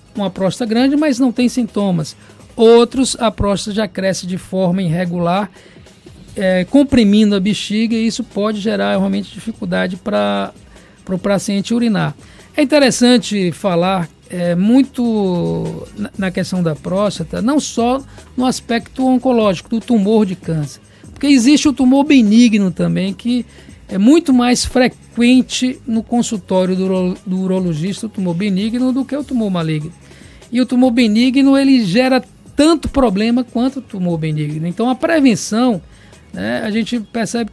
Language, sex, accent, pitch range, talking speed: Portuguese, male, Brazilian, 185-245 Hz, 140 wpm